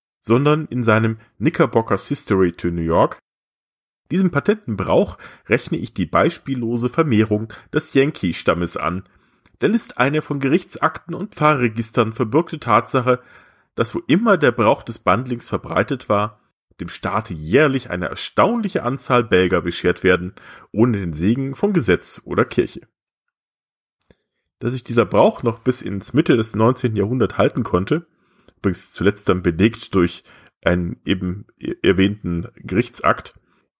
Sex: male